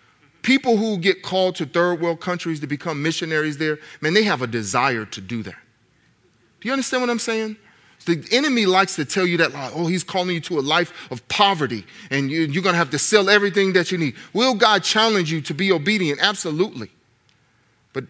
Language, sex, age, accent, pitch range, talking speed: English, male, 40-59, American, 125-170 Hz, 205 wpm